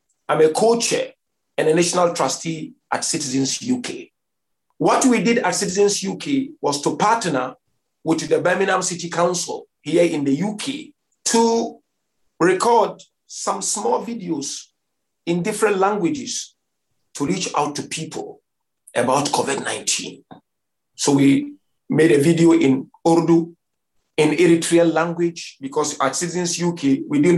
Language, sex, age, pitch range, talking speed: English, male, 50-69, 150-210 Hz, 130 wpm